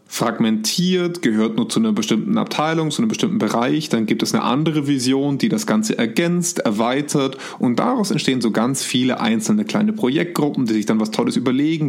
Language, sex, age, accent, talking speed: German, male, 30-49, German, 185 wpm